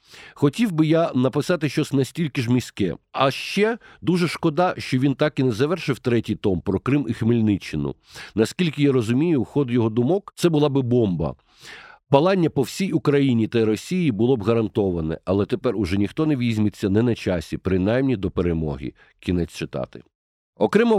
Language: Ukrainian